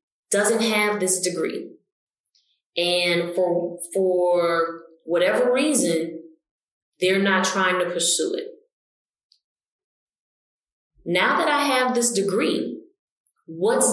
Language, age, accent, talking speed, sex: English, 20-39, American, 95 wpm, female